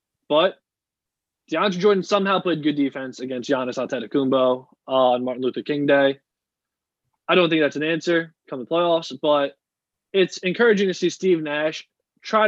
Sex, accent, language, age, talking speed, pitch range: male, American, English, 20-39, 155 wpm, 135-170 Hz